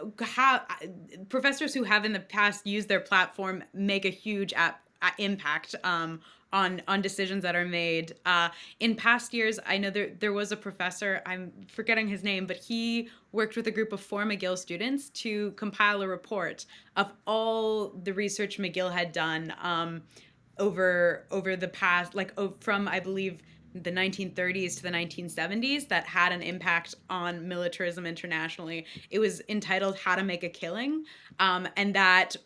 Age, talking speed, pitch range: 20-39, 165 wpm, 175-205 Hz